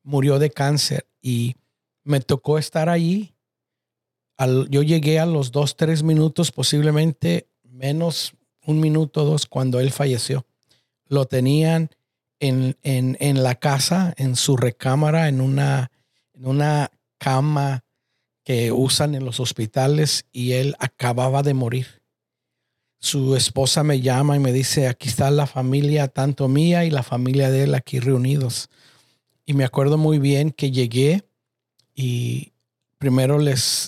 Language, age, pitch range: Spanish, 50-69, 125-150 Hz